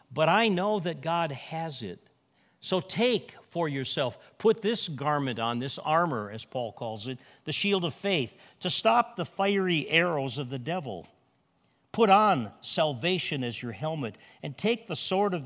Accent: American